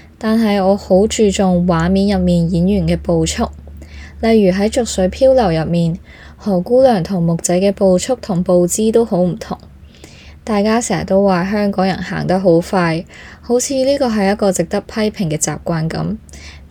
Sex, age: female, 20-39